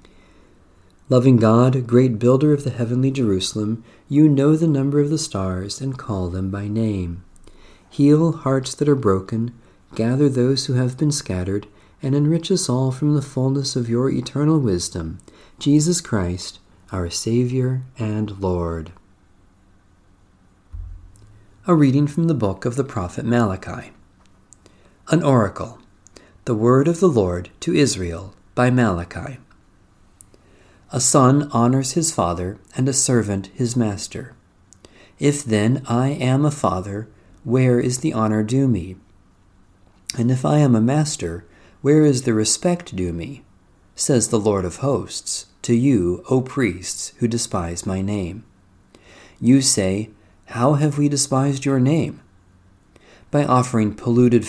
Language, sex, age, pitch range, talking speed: English, male, 40-59, 95-130 Hz, 140 wpm